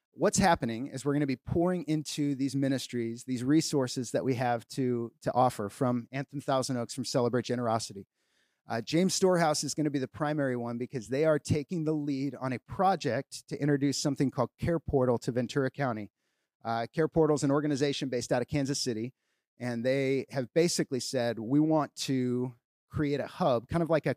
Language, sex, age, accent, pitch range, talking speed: English, male, 30-49, American, 125-155 Hz, 200 wpm